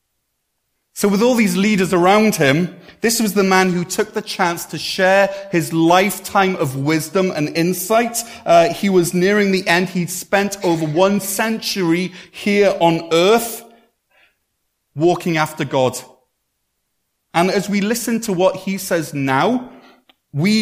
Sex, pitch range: male, 145-190 Hz